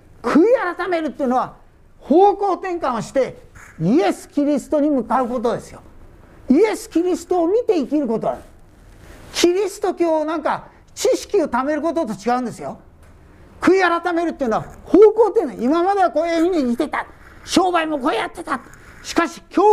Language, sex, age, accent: Japanese, male, 40-59, native